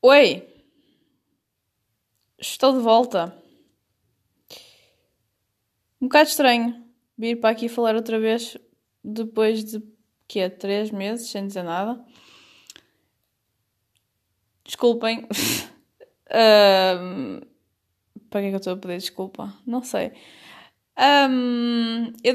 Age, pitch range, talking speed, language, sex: 10-29, 195-230 Hz, 90 wpm, Portuguese, female